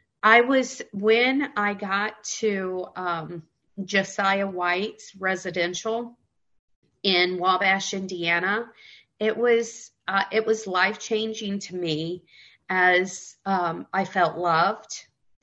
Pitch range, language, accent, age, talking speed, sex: 175-205 Hz, English, American, 40-59, 95 wpm, female